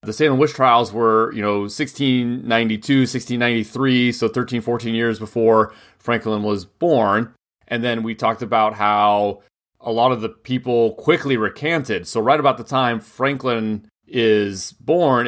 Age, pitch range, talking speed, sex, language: 30-49, 105-125 Hz, 150 wpm, male, English